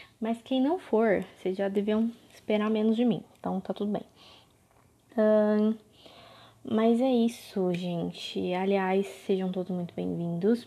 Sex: female